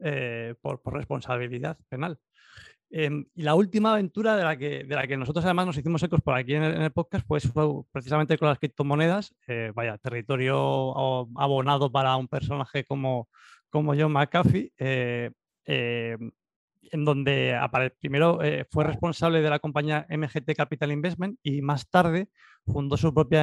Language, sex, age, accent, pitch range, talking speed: Spanish, male, 30-49, Spanish, 130-160 Hz, 165 wpm